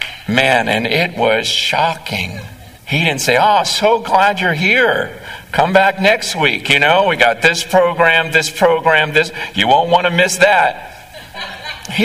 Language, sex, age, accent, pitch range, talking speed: English, male, 50-69, American, 190-235 Hz, 165 wpm